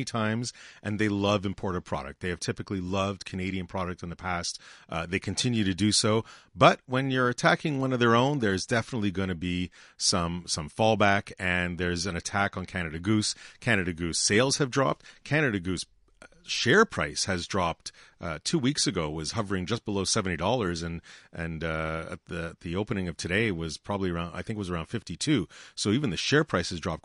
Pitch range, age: 90-115 Hz, 40-59